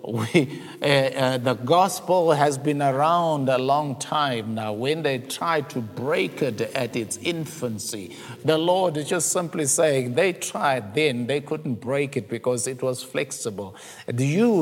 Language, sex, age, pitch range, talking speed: English, male, 50-69, 130-175 Hz, 160 wpm